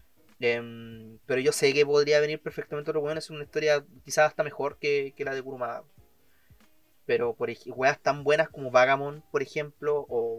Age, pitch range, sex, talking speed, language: 30-49, 125-160 Hz, male, 180 wpm, Spanish